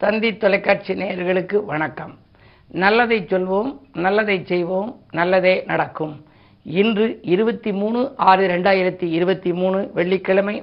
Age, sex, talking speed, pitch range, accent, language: 50-69, female, 100 wpm, 175-210 Hz, native, Tamil